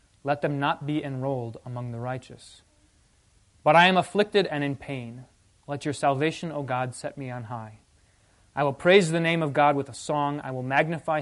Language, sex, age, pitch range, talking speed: English, male, 30-49, 120-160 Hz, 200 wpm